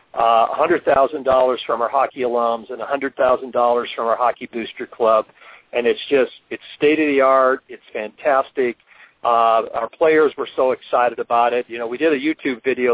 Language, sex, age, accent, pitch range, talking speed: English, male, 50-69, American, 120-200 Hz, 175 wpm